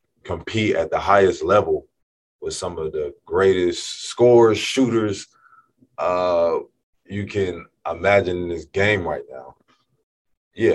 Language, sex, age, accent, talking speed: English, male, 20-39, American, 125 wpm